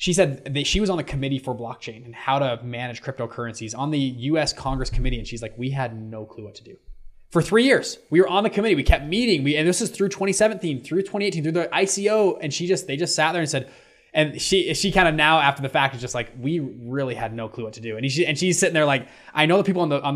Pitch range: 125-165 Hz